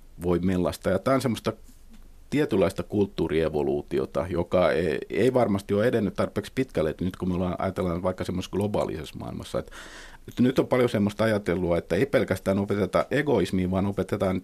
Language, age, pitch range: Finnish, 50-69, 85-105 Hz